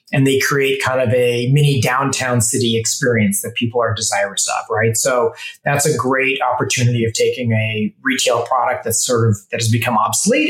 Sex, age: male, 30-49